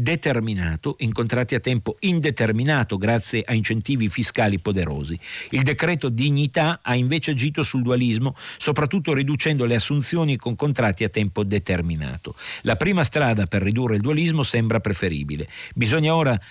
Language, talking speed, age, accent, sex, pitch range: Italian, 140 wpm, 50-69, native, male, 100-130 Hz